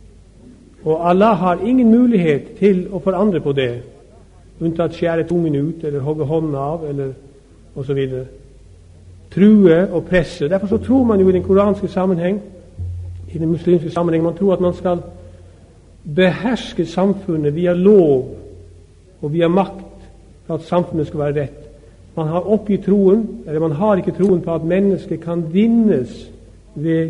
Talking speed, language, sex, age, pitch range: 165 wpm, Danish, male, 50-69, 135-175 Hz